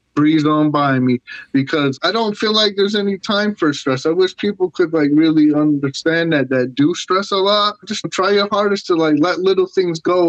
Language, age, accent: English, 30-49, American